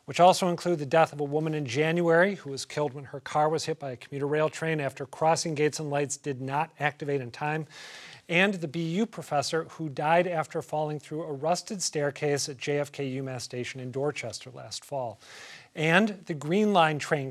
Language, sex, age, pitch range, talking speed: English, male, 40-59, 135-170 Hz, 200 wpm